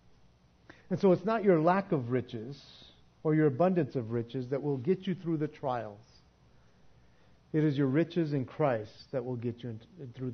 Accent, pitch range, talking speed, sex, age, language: American, 120-180 Hz, 180 wpm, male, 50-69, English